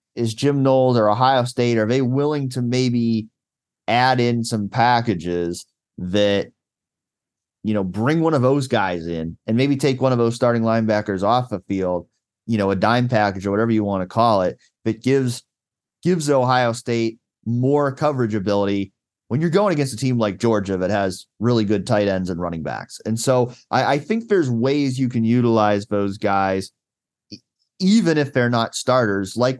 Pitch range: 100-130 Hz